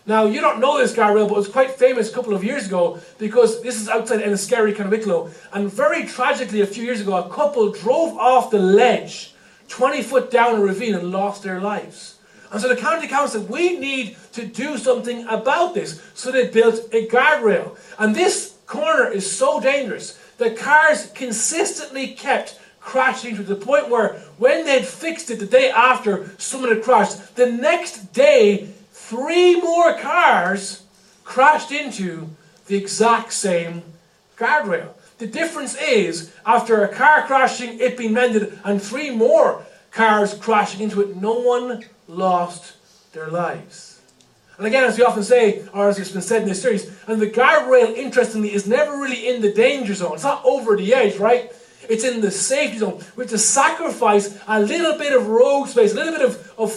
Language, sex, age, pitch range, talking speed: English, male, 40-59, 205-265 Hz, 180 wpm